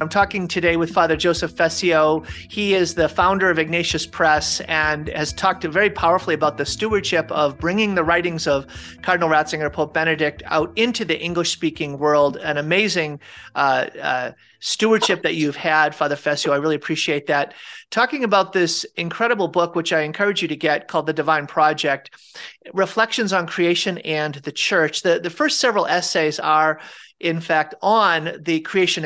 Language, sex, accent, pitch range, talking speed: English, male, American, 150-185 Hz, 170 wpm